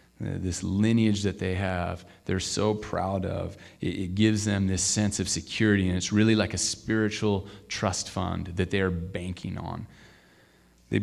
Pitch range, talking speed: 85-100 Hz, 160 wpm